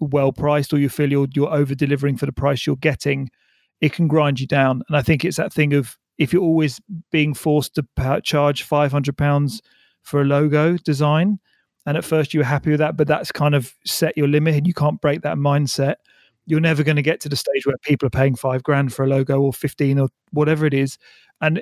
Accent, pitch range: British, 140-155 Hz